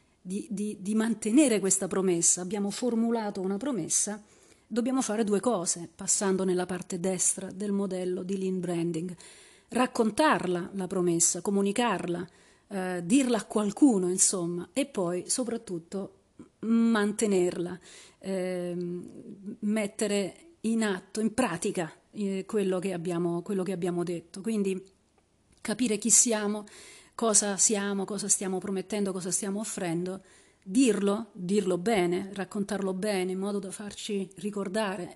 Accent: native